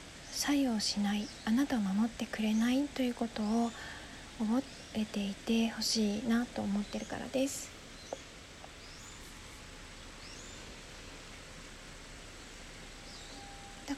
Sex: female